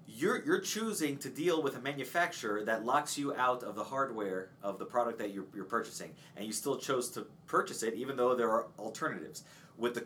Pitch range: 125-170 Hz